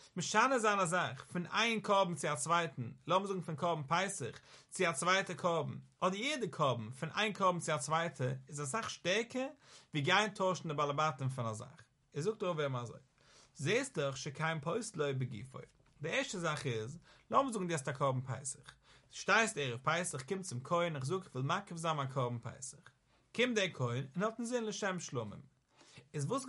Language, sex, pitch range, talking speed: English, male, 135-195 Hz, 95 wpm